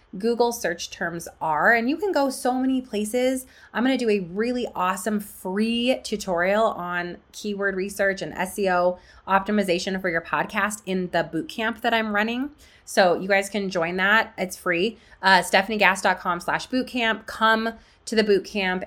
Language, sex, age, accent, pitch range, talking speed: English, female, 20-39, American, 180-230 Hz, 160 wpm